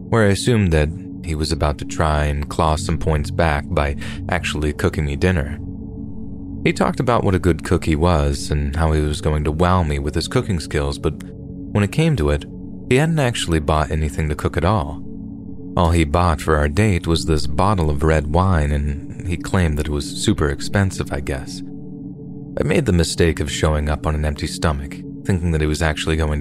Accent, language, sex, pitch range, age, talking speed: American, English, male, 75-95 Hz, 30-49, 215 wpm